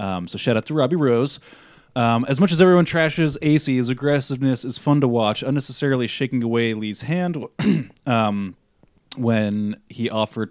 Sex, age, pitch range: male, 20-39, 110-135 Hz